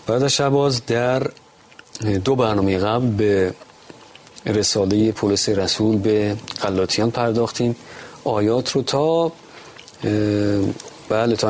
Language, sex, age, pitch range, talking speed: Persian, male, 40-59, 105-130 Hz, 90 wpm